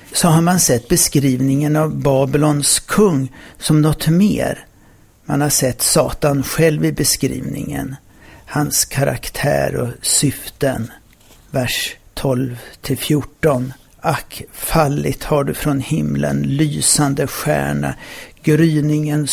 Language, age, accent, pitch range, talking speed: Swedish, 60-79, native, 130-155 Hz, 100 wpm